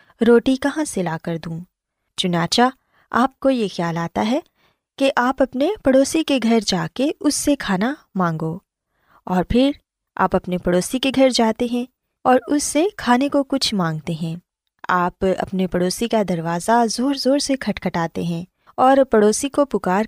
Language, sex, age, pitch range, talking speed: Urdu, female, 20-39, 180-270 Hz, 170 wpm